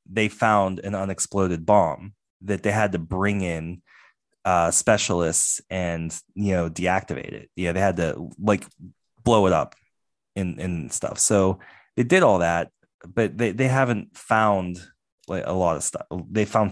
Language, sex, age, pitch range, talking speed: English, male, 20-39, 90-115 Hz, 165 wpm